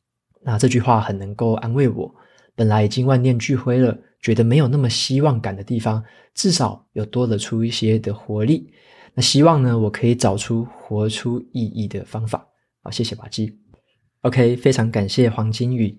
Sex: male